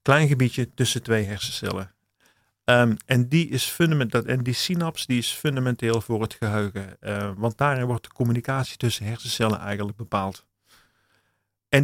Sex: male